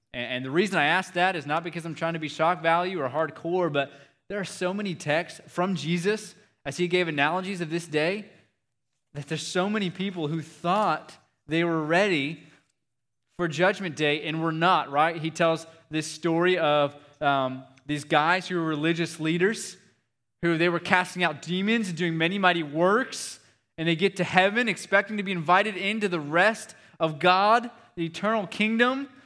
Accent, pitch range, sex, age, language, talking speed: American, 140-180 Hz, male, 20-39, English, 185 wpm